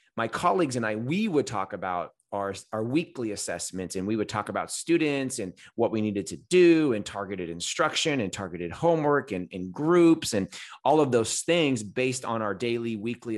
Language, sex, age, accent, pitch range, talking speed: English, male, 30-49, American, 100-125 Hz, 195 wpm